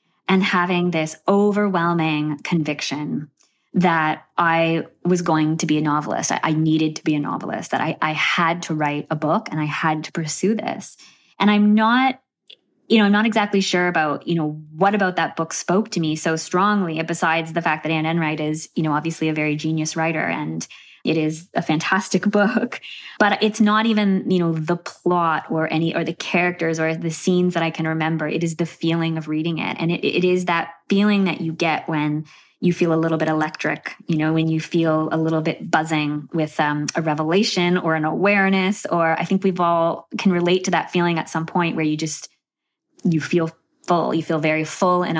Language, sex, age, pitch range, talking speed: English, female, 20-39, 155-185 Hz, 210 wpm